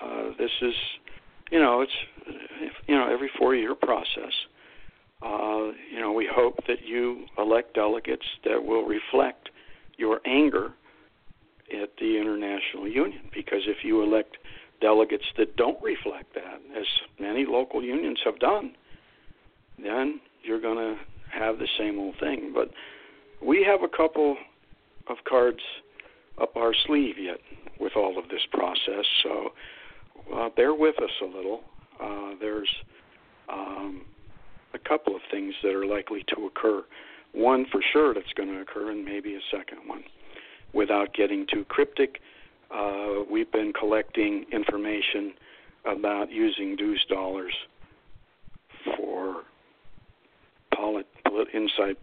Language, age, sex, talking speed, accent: English, 60-79, male, 135 wpm, American